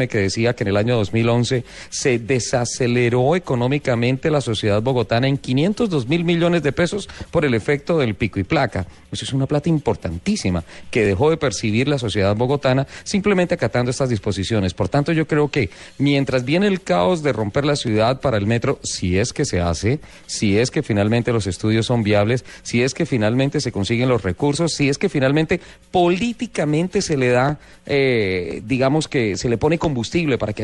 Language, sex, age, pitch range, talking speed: Spanish, male, 40-59, 115-150 Hz, 190 wpm